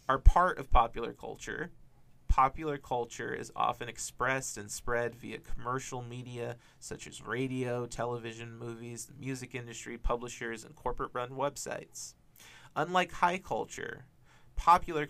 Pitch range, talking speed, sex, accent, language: 115-145 Hz, 125 wpm, male, American, English